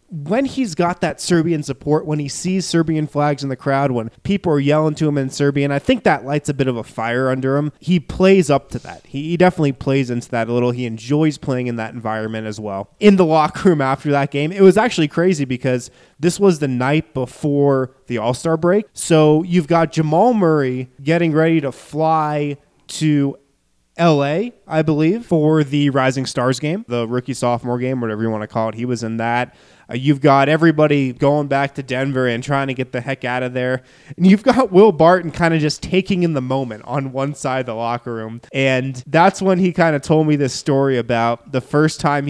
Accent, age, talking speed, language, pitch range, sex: American, 20-39, 220 wpm, English, 130-160 Hz, male